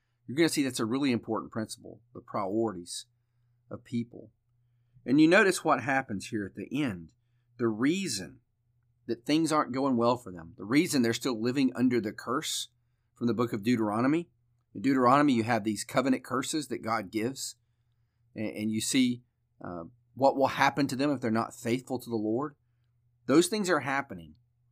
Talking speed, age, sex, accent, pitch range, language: 175 wpm, 40-59, male, American, 115-130 Hz, English